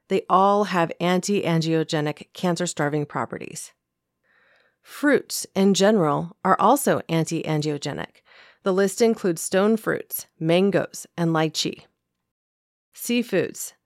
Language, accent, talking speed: English, American, 90 wpm